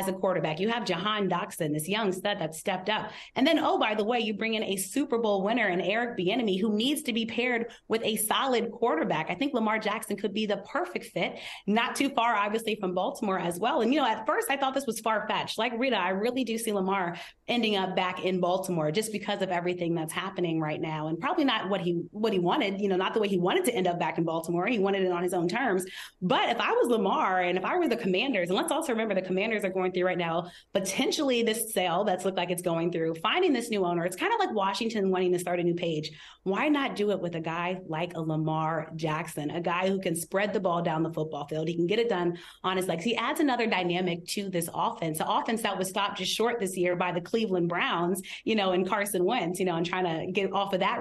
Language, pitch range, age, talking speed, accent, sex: English, 175-225 Hz, 30-49, 260 wpm, American, female